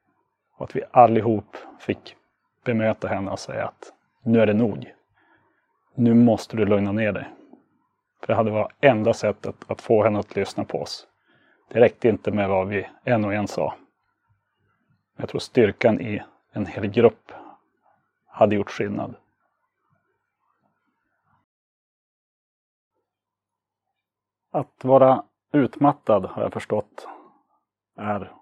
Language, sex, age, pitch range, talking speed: Swedish, male, 30-49, 105-125 Hz, 125 wpm